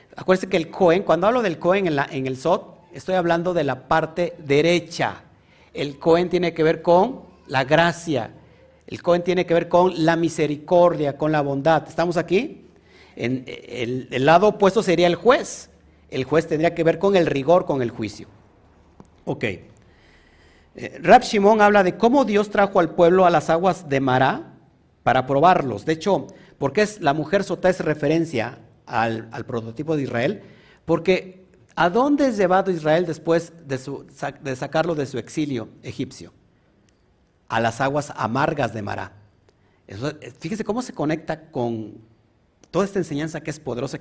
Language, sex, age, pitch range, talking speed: Spanish, male, 50-69, 125-175 Hz, 165 wpm